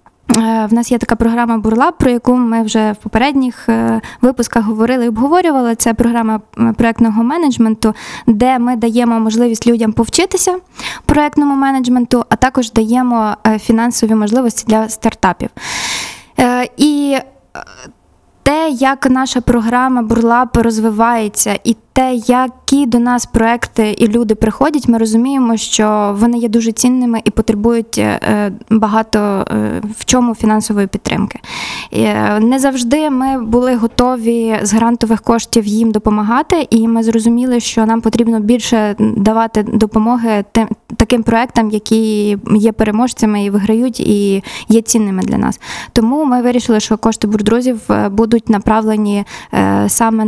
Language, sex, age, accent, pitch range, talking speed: Ukrainian, female, 20-39, native, 220-245 Hz, 125 wpm